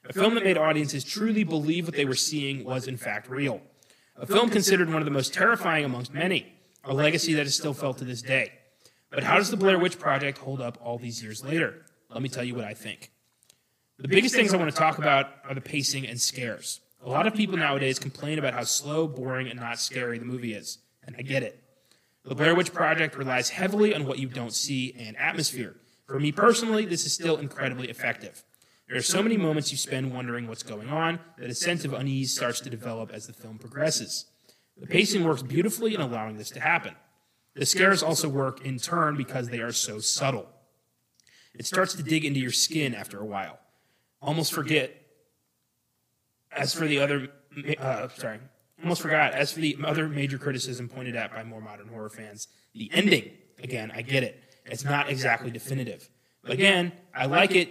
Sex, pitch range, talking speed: male, 125-160 Hz, 205 wpm